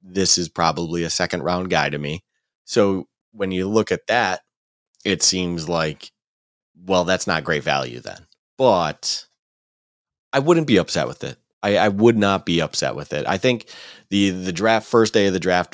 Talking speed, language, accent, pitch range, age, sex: 185 wpm, English, American, 85-105 Hz, 30-49, male